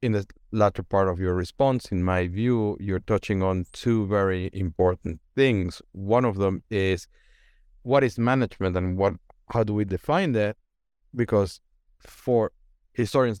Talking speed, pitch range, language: 150 wpm, 95-115 Hz, English